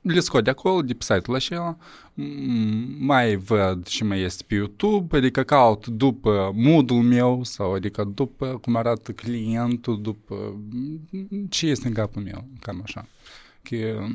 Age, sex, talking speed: 20-39, male, 145 wpm